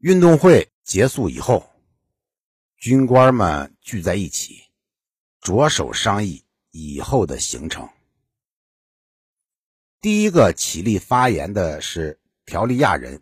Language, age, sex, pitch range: Chinese, 60-79, male, 95-150 Hz